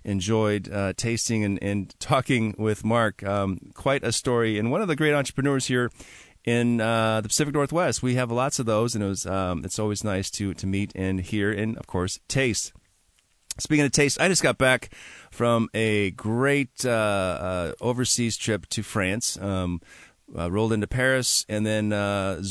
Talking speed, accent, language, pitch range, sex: 185 wpm, American, English, 95-120 Hz, male